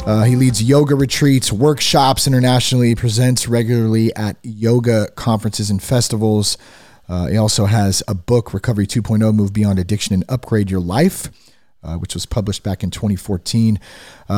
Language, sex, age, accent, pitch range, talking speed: English, male, 30-49, American, 105-140 Hz, 150 wpm